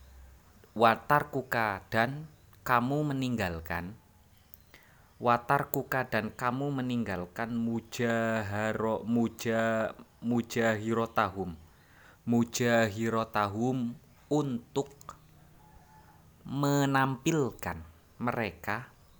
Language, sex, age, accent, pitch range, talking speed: Indonesian, male, 20-39, native, 100-125 Hz, 50 wpm